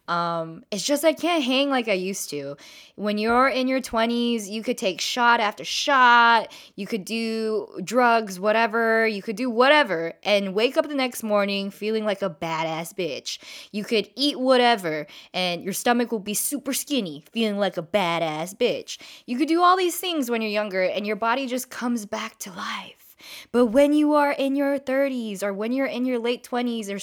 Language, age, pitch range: English, 20-39, 205-260 Hz